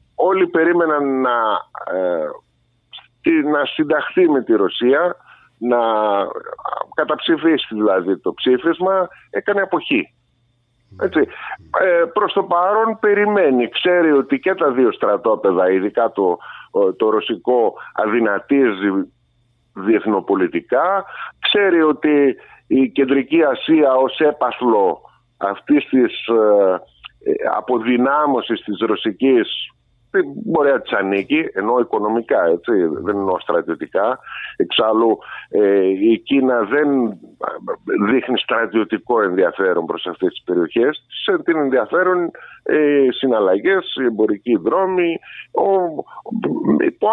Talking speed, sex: 90 wpm, male